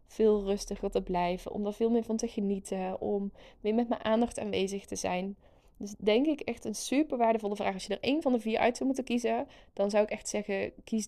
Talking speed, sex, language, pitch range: 240 wpm, female, Dutch, 200-230 Hz